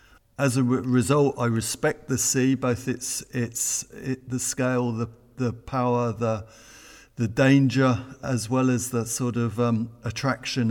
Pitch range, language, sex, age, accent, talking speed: 115-130 Hz, English, male, 50-69, British, 150 wpm